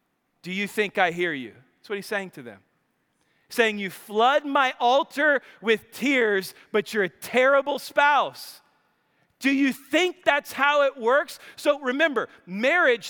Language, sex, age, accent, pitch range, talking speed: English, male, 40-59, American, 210-255 Hz, 155 wpm